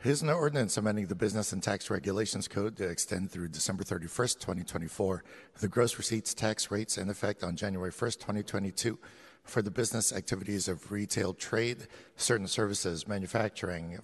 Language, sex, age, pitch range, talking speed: English, male, 60-79, 95-110 Hz, 160 wpm